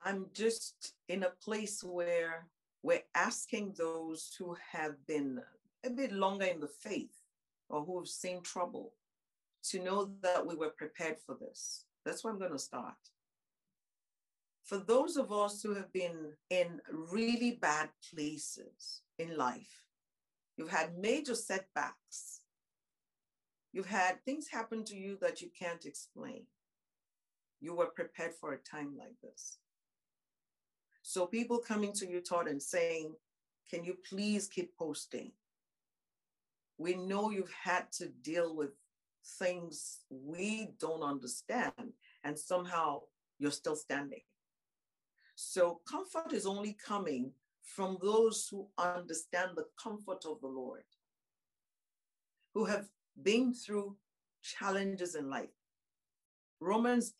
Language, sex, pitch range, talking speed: English, female, 160-210 Hz, 130 wpm